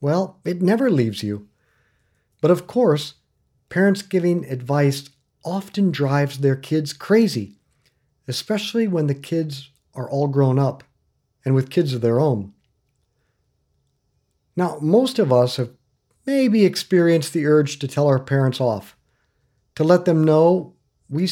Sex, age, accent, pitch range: male, 50-69, American, 125-185 Hz